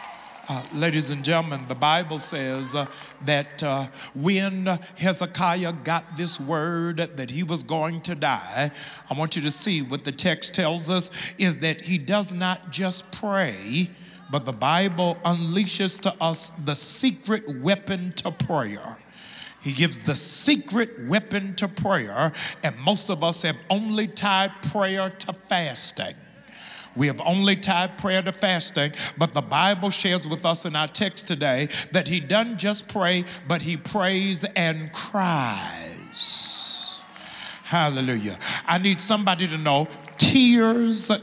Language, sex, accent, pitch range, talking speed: English, male, American, 160-195 Hz, 145 wpm